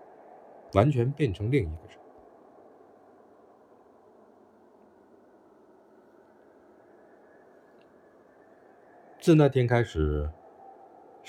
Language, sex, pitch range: Chinese, male, 80-130 Hz